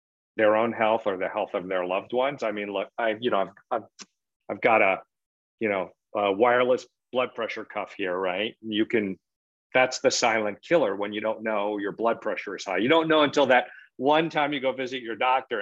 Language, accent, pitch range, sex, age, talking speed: English, American, 110-140 Hz, male, 50-69, 220 wpm